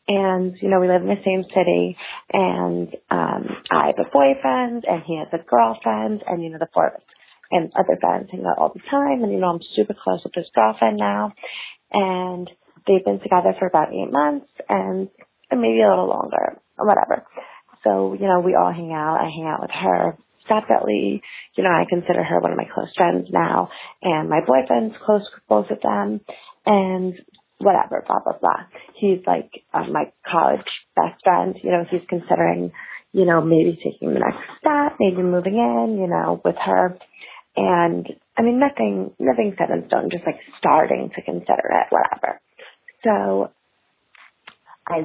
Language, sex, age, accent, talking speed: English, female, 30-49, American, 190 wpm